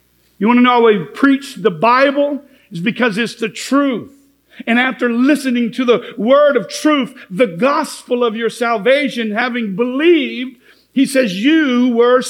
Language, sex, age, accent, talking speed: English, male, 50-69, American, 160 wpm